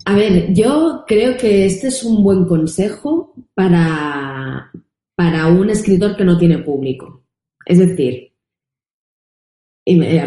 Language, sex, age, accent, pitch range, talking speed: Spanish, female, 20-39, Spanish, 160-195 Hz, 135 wpm